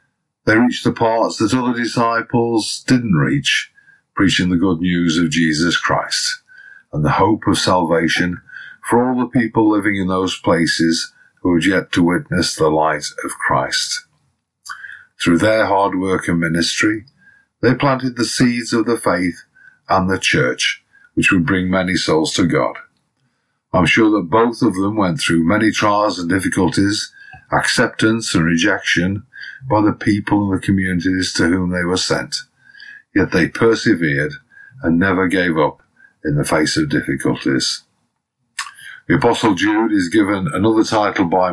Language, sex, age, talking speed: English, male, 50-69, 155 wpm